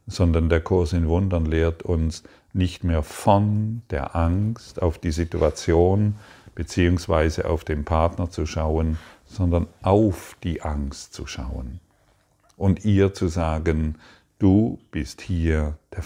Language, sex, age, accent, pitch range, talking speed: German, male, 50-69, German, 80-95 Hz, 130 wpm